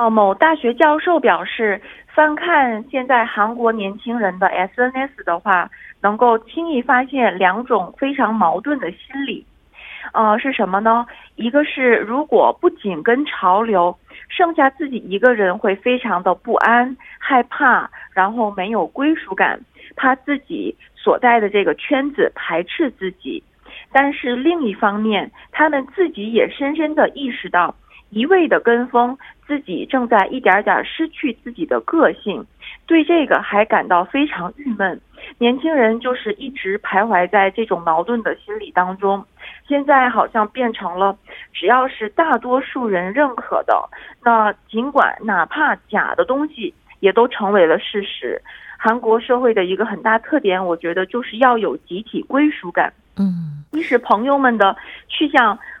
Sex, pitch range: female, 200-285 Hz